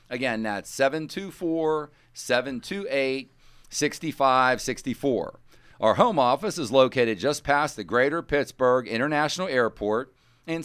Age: 40-59